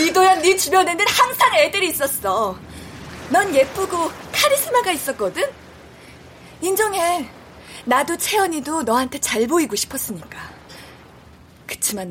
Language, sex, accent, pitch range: Korean, female, native, 230-370 Hz